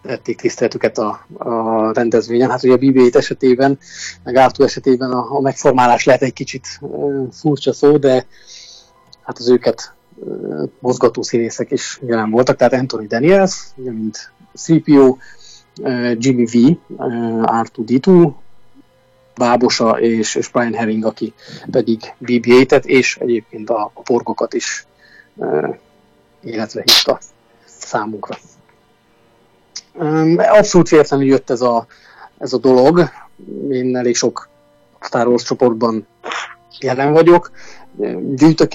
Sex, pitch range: male, 115-135 Hz